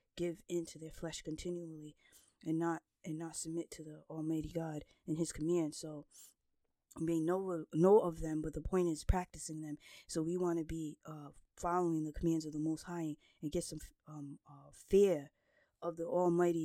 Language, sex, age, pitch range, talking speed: English, female, 20-39, 160-185 Hz, 185 wpm